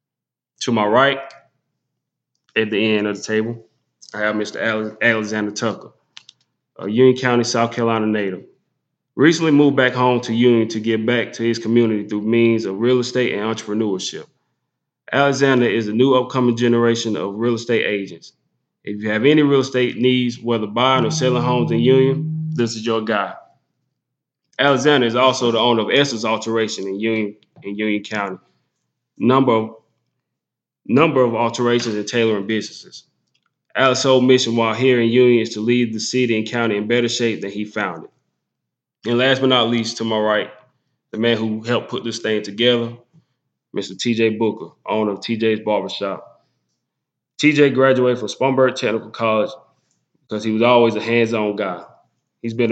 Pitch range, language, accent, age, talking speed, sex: 110-125 Hz, English, American, 20-39, 165 wpm, male